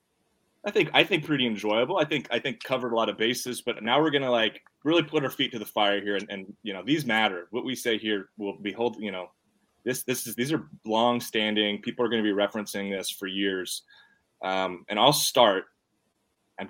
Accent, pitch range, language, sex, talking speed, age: American, 100-120 Hz, English, male, 225 wpm, 20-39